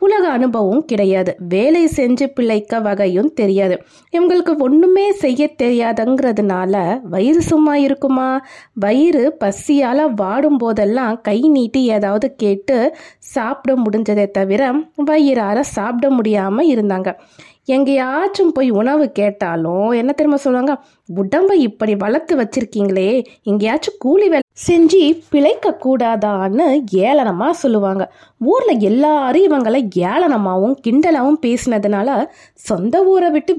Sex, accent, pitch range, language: female, native, 205-305 Hz, Tamil